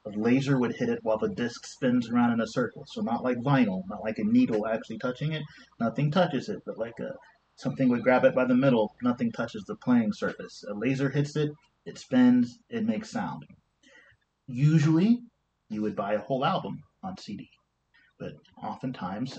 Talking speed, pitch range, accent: 190 wpm, 105-150 Hz, American